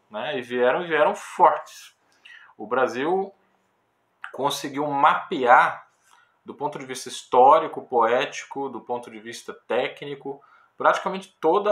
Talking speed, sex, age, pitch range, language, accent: 115 wpm, male, 20-39, 110-150 Hz, Portuguese, Brazilian